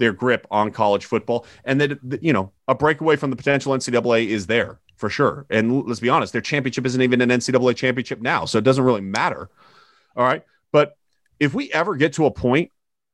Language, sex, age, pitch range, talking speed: English, male, 30-49, 120-150 Hz, 210 wpm